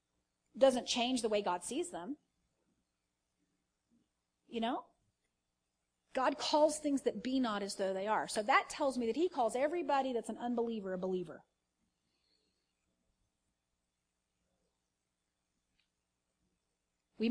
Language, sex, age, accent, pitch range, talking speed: English, female, 30-49, American, 145-245 Hz, 115 wpm